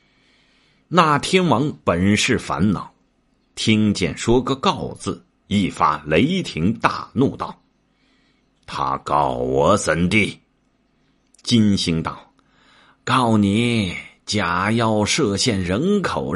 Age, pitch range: 50-69, 90-135 Hz